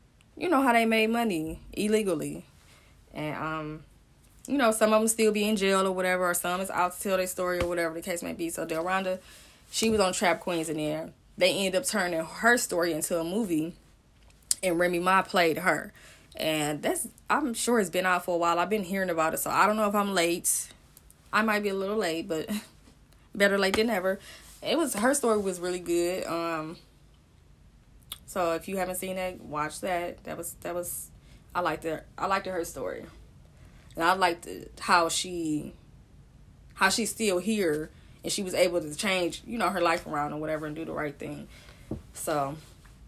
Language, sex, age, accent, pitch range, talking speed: English, female, 20-39, American, 160-195 Hz, 205 wpm